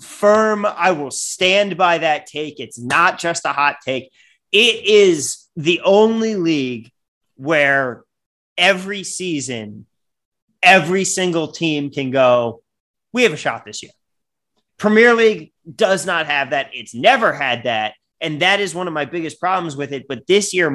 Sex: male